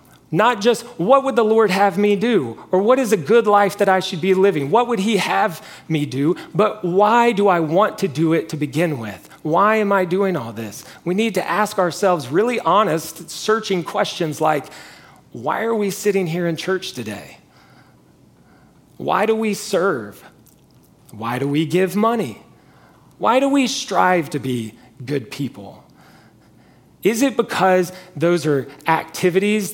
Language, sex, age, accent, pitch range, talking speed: English, male, 30-49, American, 160-205 Hz, 170 wpm